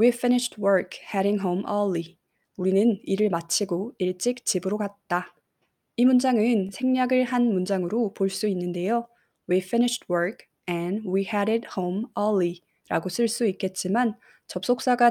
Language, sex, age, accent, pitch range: Korean, female, 20-39, native, 180-230 Hz